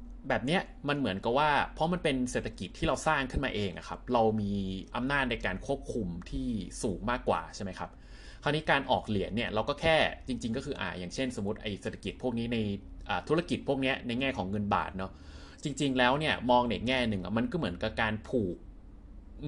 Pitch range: 100-130 Hz